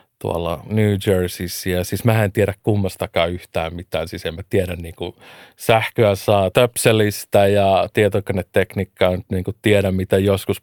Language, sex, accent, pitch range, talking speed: Finnish, male, native, 95-120 Hz, 135 wpm